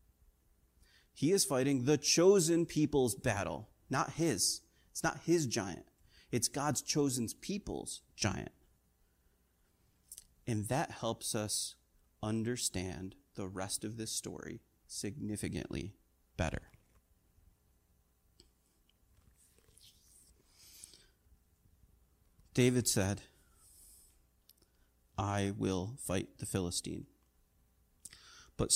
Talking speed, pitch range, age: 80 wpm, 85-140 Hz, 30-49